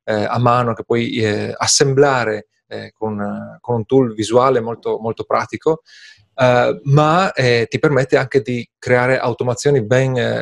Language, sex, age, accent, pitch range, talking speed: Italian, male, 30-49, native, 115-145 Hz, 115 wpm